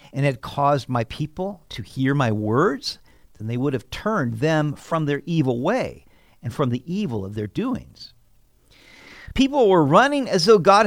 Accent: American